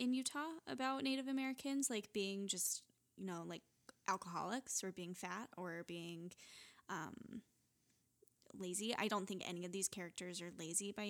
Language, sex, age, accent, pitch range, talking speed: English, female, 10-29, American, 190-220 Hz, 155 wpm